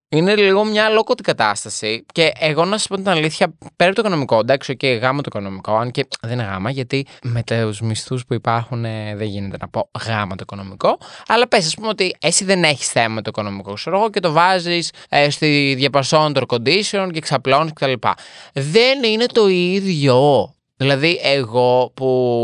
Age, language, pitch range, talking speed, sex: 20-39, Greek, 110-160 Hz, 195 wpm, male